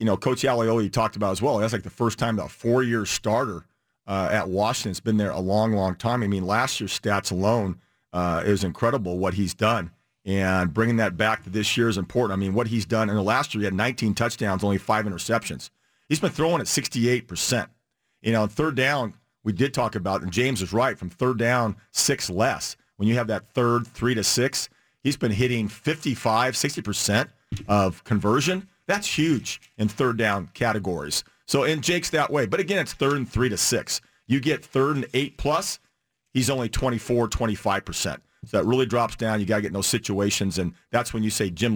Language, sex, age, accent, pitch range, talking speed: English, male, 40-59, American, 100-125 Hz, 210 wpm